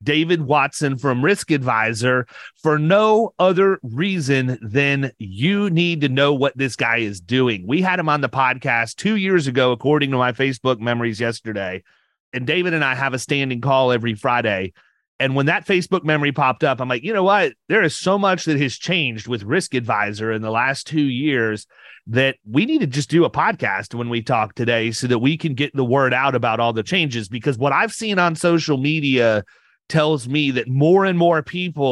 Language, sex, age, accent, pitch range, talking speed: English, male, 30-49, American, 125-170 Hz, 205 wpm